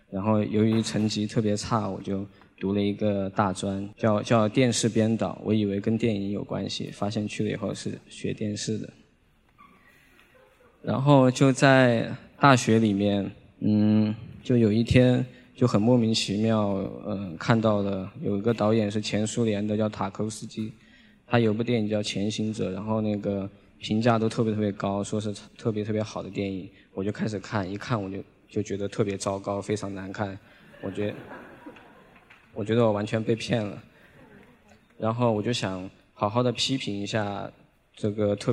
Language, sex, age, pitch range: Chinese, male, 20-39, 100-115 Hz